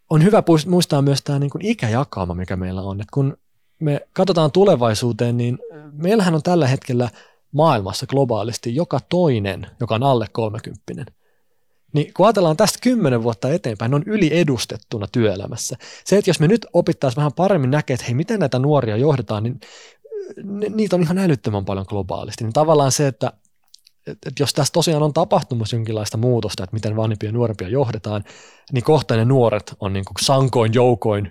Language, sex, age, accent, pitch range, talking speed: Finnish, male, 20-39, native, 110-150 Hz, 165 wpm